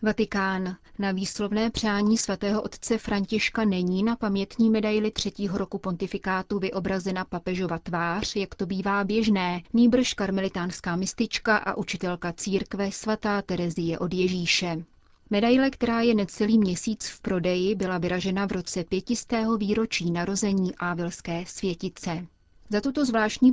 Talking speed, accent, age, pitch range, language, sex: 130 wpm, native, 30-49, 185-215 Hz, Czech, female